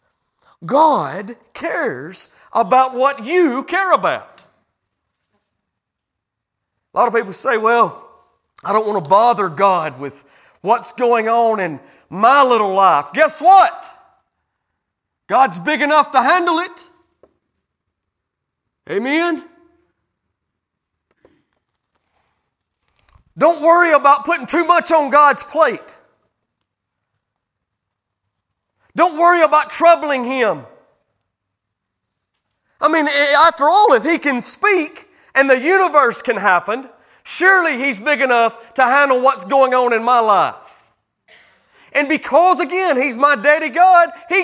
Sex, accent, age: male, American, 40-59